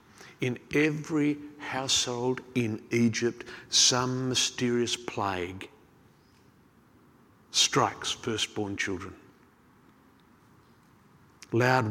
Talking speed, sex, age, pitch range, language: 60 wpm, male, 50-69, 115-145 Hz, English